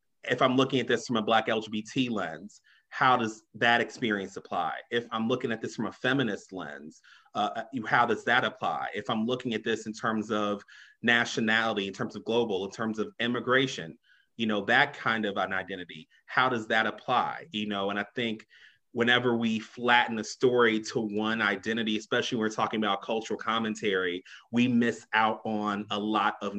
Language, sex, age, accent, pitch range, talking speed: English, male, 30-49, American, 105-120 Hz, 190 wpm